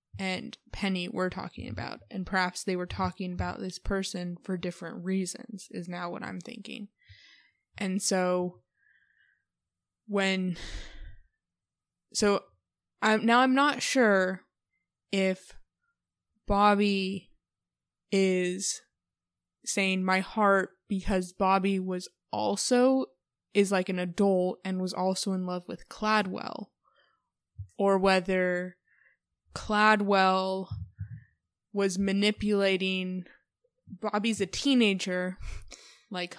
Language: English